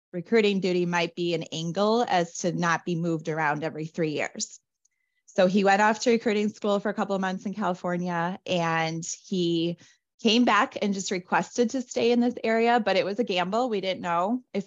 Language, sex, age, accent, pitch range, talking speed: English, female, 20-39, American, 175-220 Hz, 205 wpm